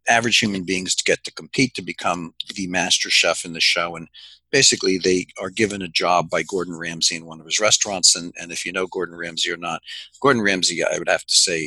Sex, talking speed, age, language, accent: male, 235 wpm, 50-69, English, American